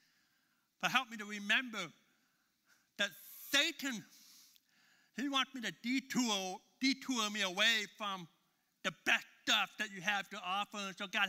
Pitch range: 140-205 Hz